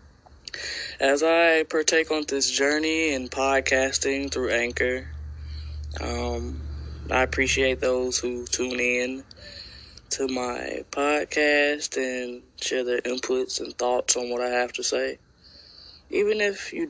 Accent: American